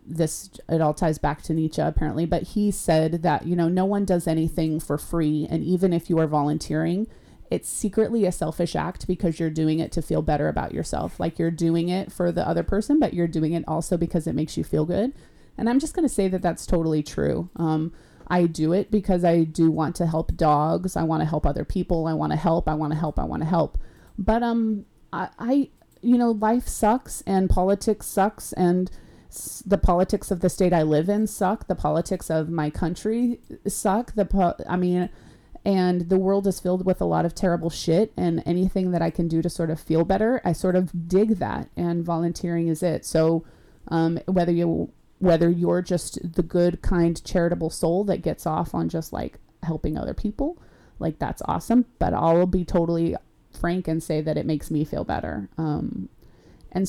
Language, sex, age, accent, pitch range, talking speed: English, female, 30-49, American, 160-190 Hz, 210 wpm